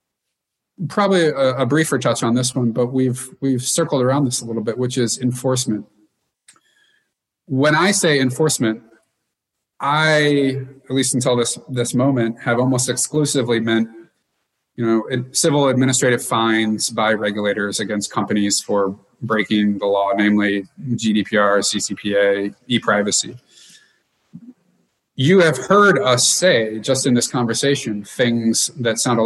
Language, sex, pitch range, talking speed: English, male, 110-130 Hz, 135 wpm